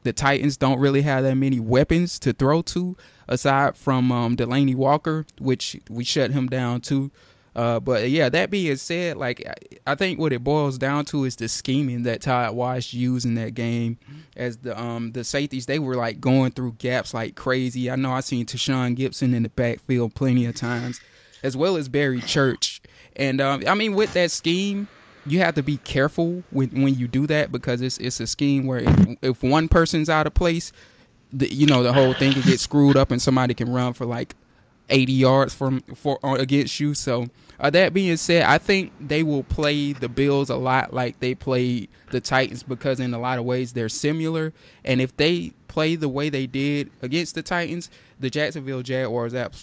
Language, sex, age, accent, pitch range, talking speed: English, male, 20-39, American, 125-145 Hz, 205 wpm